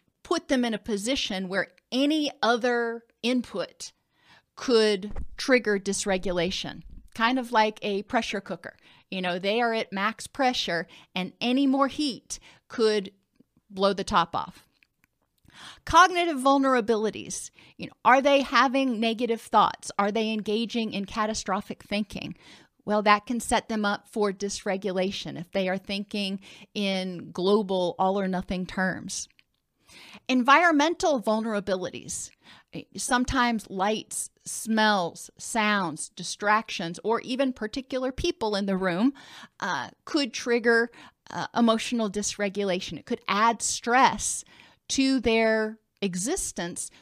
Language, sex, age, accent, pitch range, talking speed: English, female, 40-59, American, 195-240 Hz, 120 wpm